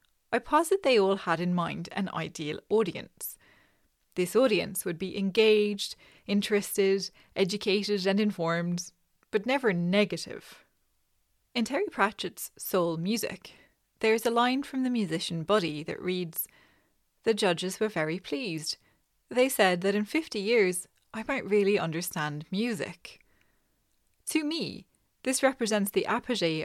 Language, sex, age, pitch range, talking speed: English, female, 20-39, 175-220 Hz, 135 wpm